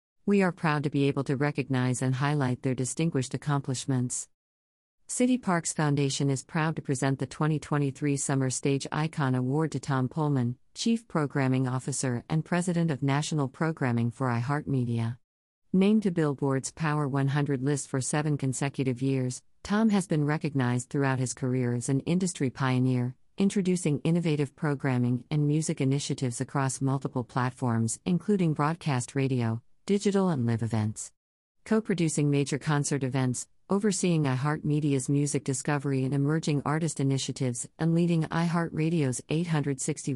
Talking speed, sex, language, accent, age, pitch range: 140 wpm, female, English, American, 50-69, 130-155 Hz